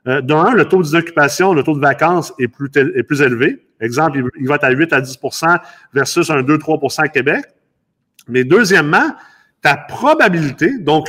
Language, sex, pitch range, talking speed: French, male, 150-205 Hz, 180 wpm